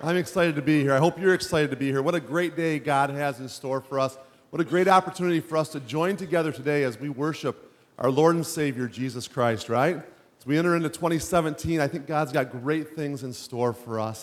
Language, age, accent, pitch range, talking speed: English, 40-59, American, 130-175 Hz, 240 wpm